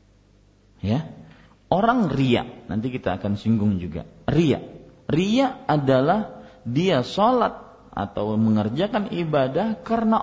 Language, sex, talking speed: Malay, male, 100 wpm